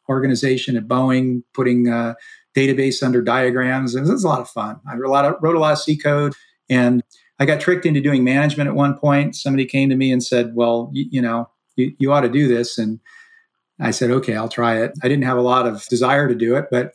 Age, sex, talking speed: 40-59, male, 255 wpm